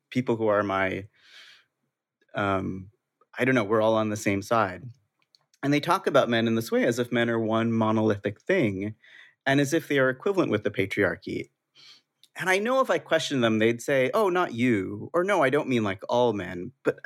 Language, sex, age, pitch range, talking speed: English, male, 30-49, 110-140 Hz, 210 wpm